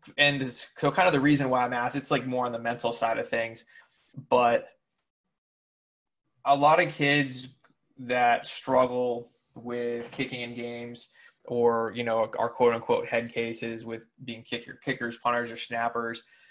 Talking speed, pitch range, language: 160 wpm, 115-130 Hz, English